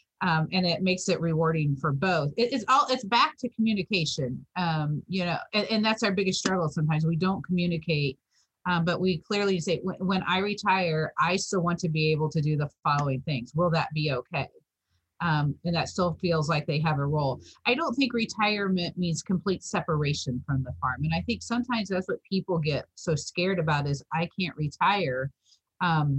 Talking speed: 205 wpm